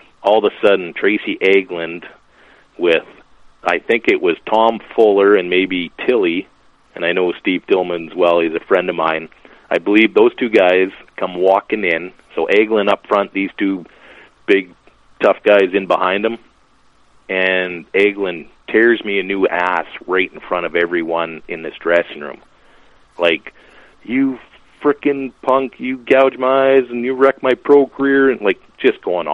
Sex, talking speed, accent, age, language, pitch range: male, 170 wpm, American, 40-59, English, 90-140 Hz